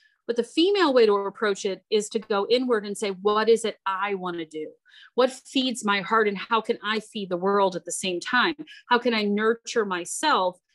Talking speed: 225 wpm